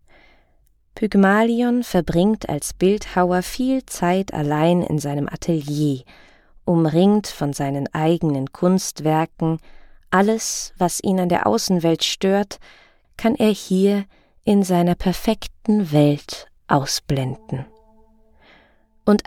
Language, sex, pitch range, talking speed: German, female, 165-230 Hz, 95 wpm